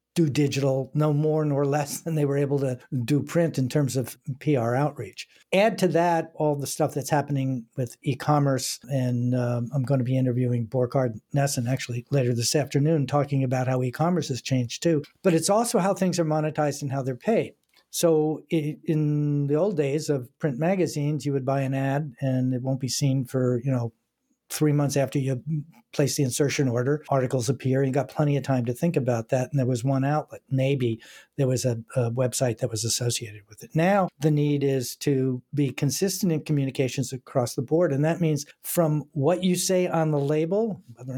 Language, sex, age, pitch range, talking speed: English, male, 50-69, 130-150 Hz, 205 wpm